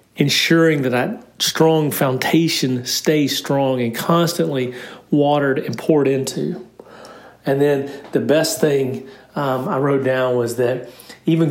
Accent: American